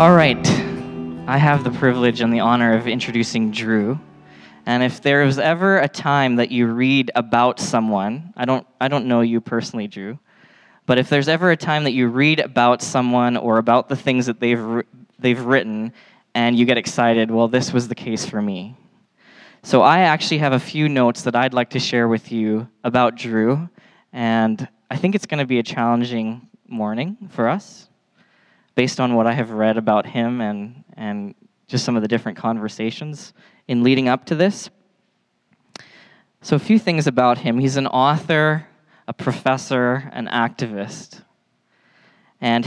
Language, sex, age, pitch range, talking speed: English, male, 20-39, 115-140 Hz, 175 wpm